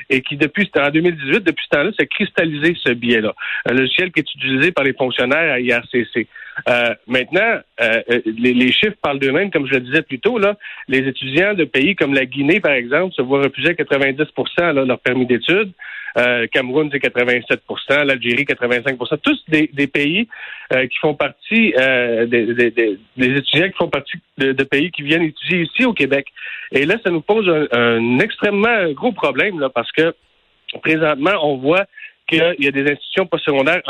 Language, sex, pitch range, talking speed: French, male, 130-170 Hz, 195 wpm